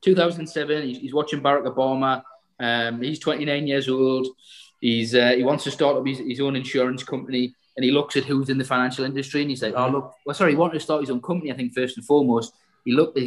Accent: British